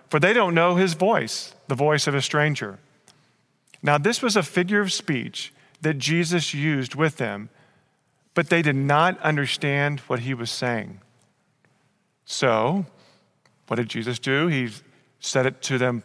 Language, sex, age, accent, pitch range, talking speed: English, male, 40-59, American, 125-160 Hz, 155 wpm